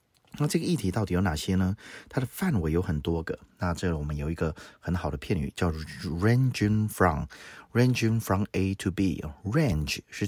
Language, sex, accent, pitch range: Chinese, male, native, 80-105 Hz